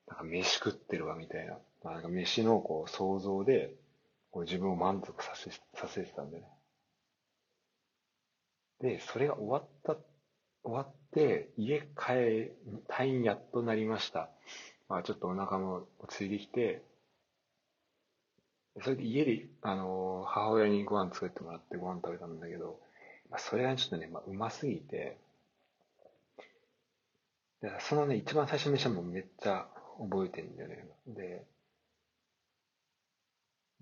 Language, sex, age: Japanese, male, 40-59